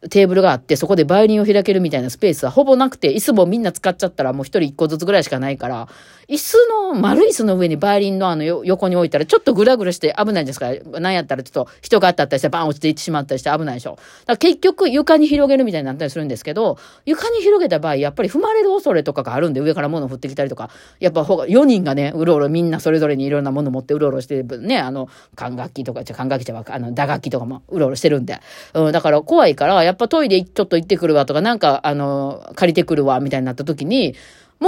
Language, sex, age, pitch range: Japanese, female, 40-59, 140-210 Hz